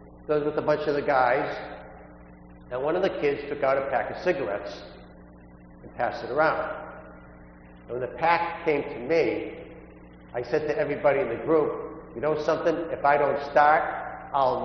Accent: American